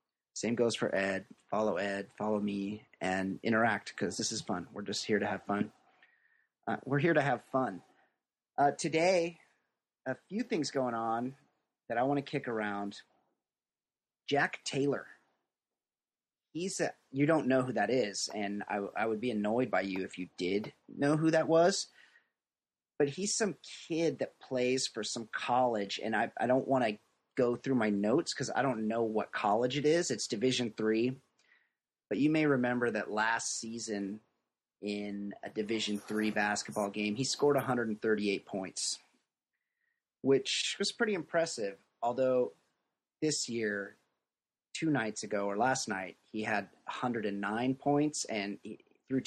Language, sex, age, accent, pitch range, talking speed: English, male, 30-49, American, 105-145 Hz, 160 wpm